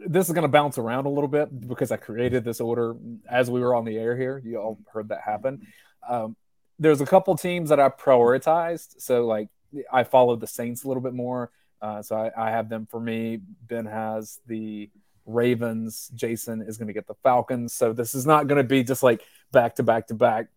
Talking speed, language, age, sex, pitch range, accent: 225 wpm, English, 30-49, male, 115-140 Hz, American